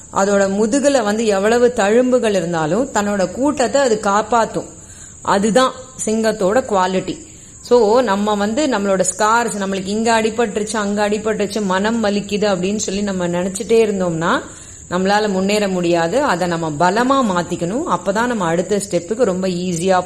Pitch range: 175-220 Hz